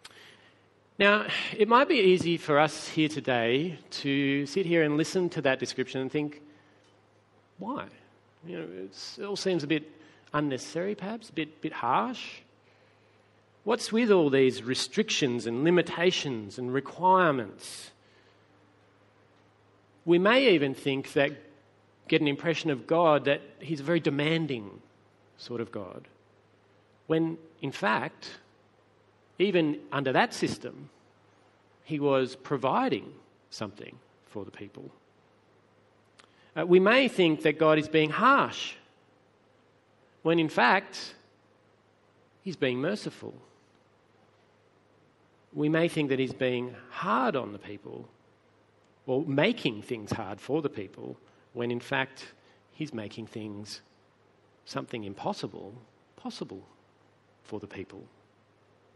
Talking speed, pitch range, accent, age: 120 wpm, 105-160 Hz, Australian, 40-59